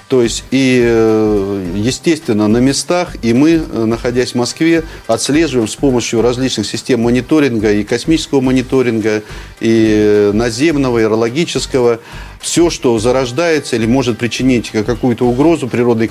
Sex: male